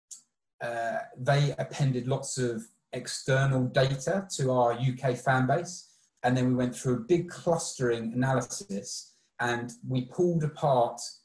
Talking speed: 135 wpm